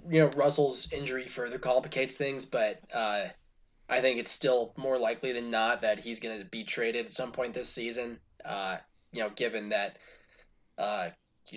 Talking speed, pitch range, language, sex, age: 180 wpm, 125-150 Hz, English, male, 20-39